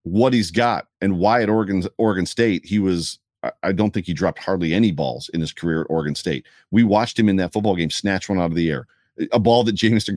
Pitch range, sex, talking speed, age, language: 90-115 Hz, male, 250 wpm, 40-59, English